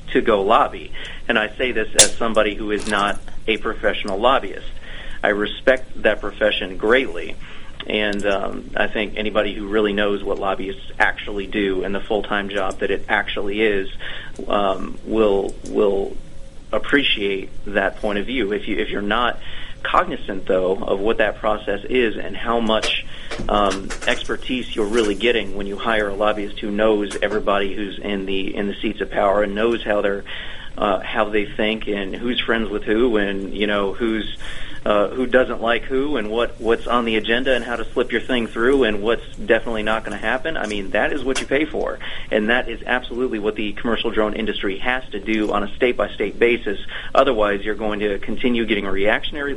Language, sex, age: English, male, 40-59